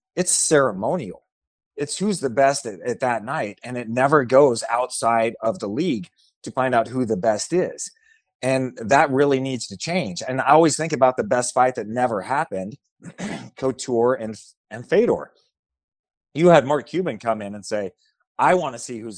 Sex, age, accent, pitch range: male, 30-49, American, 110-145 Hz